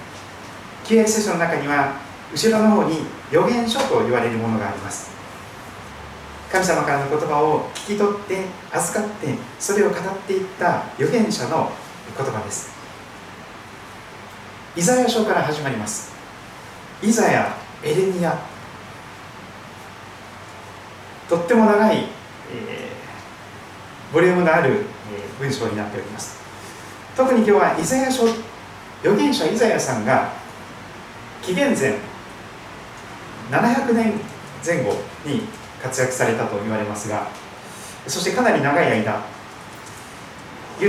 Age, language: 40-59, Japanese